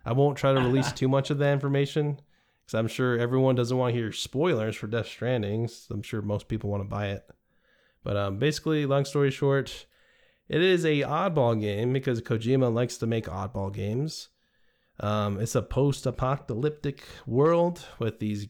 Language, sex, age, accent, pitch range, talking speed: English, male, 20-39, American, 110-145 Hz, 180 wpm